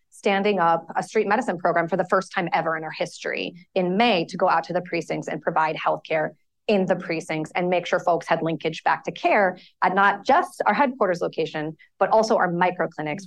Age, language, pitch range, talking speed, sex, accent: 30-49, English, 170-205 Hz, 215 wpm, female, American